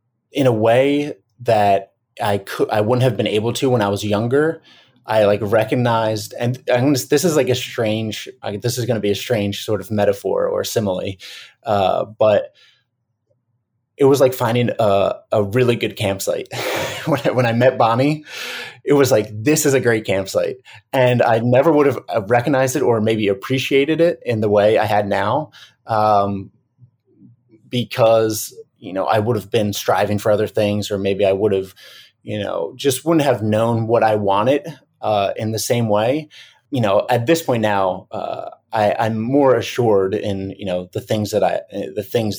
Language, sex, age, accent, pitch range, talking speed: English, male, 20-39, American, 105-135 Hz, 185 wpm